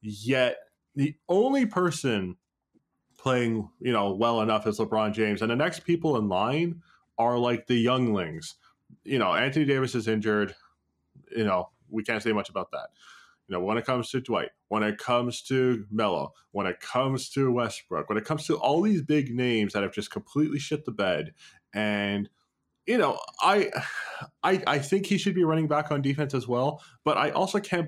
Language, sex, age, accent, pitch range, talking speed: English, male, 20-39, American, 115-150 Hz, 190 wpm